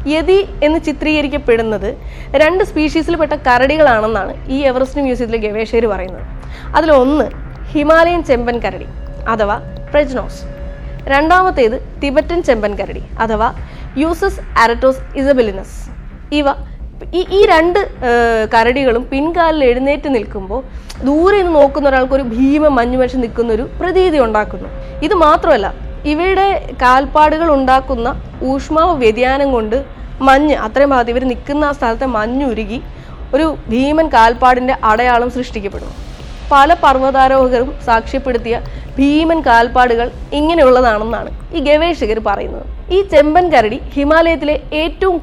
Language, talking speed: Malayalam, 100 wpm